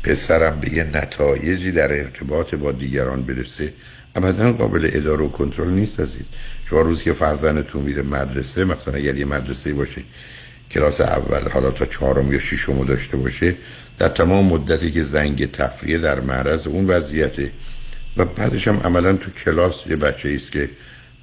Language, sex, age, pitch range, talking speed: Persian, male, 60-79, 70-90 Hz, 160 wpm